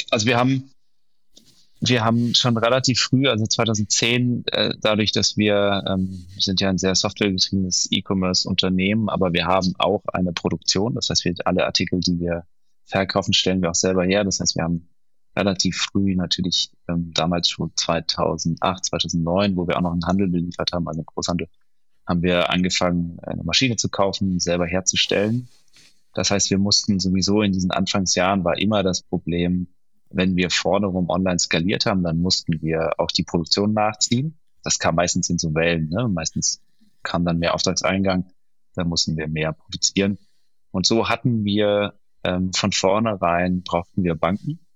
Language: German